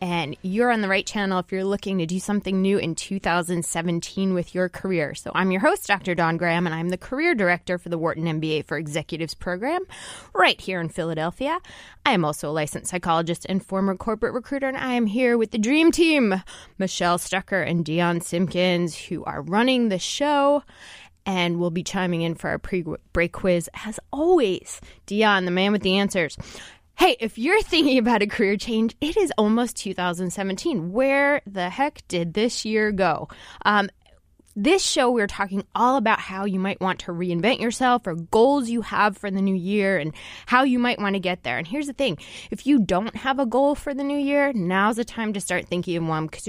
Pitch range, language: 180-240 Hz, English